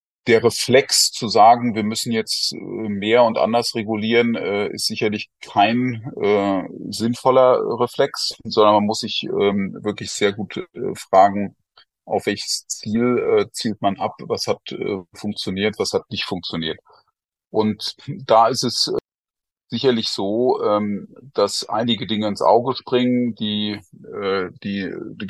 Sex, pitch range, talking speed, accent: male, 100-120 Hz, 125 wpm, German